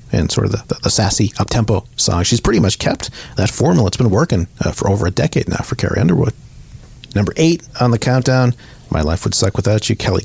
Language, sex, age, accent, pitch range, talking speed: English, male, 40-59, American, 95-125 Hz, 230 wpm